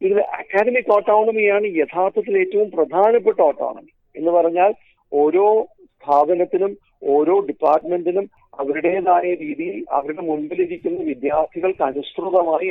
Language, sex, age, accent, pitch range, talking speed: Malayalam, male, 50-69, native, 150-215 Hz, 90 wpm